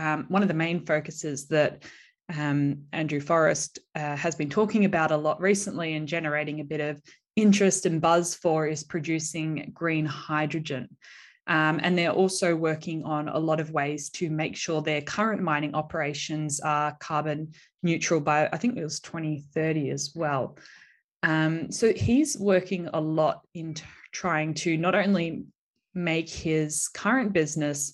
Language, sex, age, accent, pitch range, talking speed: English, female, 10-29, Australian, 150-175 Hz, 160 wpm